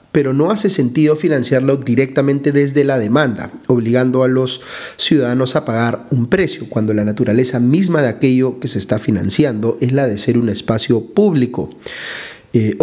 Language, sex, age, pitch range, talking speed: Spanish, male, 40-59, 120-145 Hz, 165 wpm